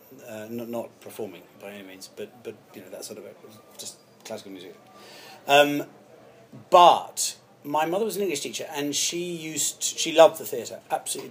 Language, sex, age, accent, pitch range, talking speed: English, male, 30-49, British, 115-140 Hz, 180 wpm